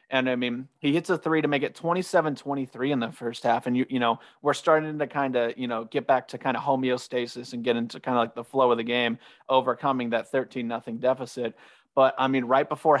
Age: 30-49